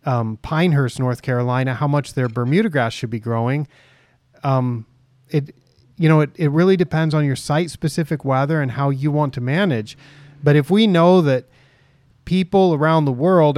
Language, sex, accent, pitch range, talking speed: English, male, American, 130-160 Hz, 175 wpm